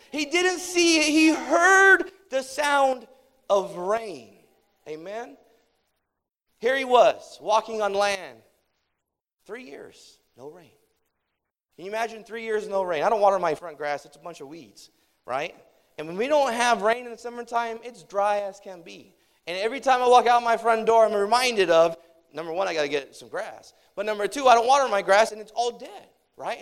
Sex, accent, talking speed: male, American, 195 wpm